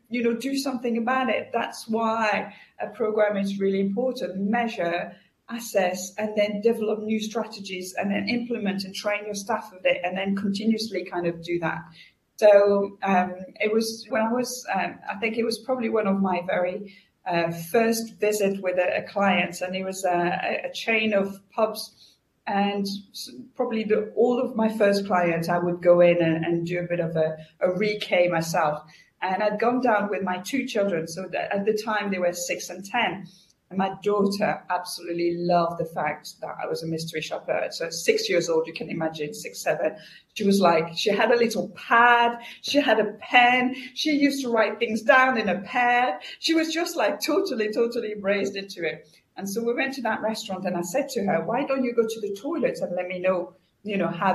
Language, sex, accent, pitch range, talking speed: English, female, British, 180-230 Hz, 205 wpm